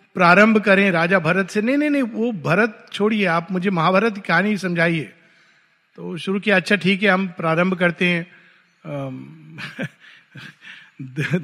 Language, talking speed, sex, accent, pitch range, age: Hindi, 145 wpm, male, native, 175-230 Hz, 50-69